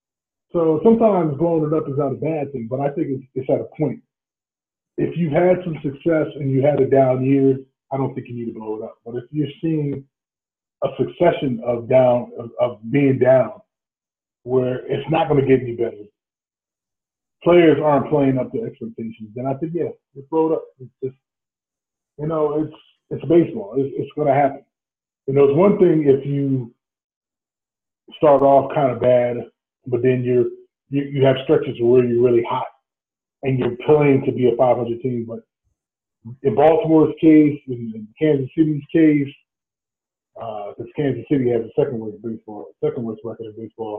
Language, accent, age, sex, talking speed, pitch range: English, American, 20-39, male, 185 wpm, 120-150 Hz